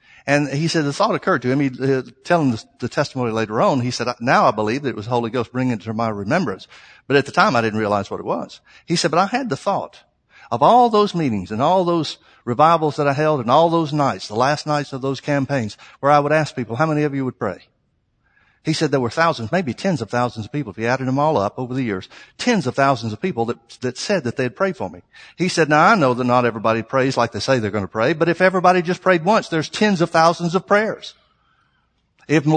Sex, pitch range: male, 120-165 Hz